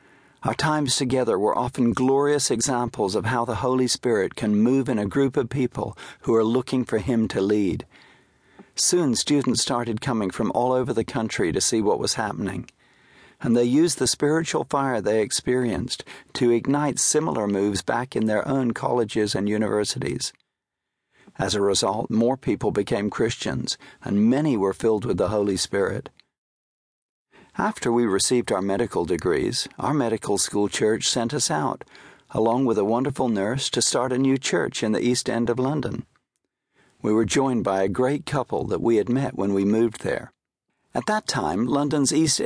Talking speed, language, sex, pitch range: 175 wpm, English, male, 110-135 Hz